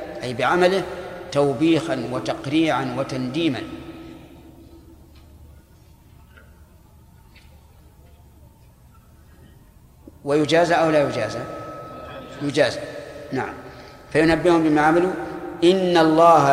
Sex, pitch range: male, 130-165 Hz